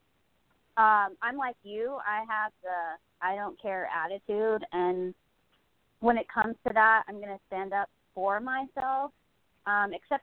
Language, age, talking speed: English, 30-49, 155 wpm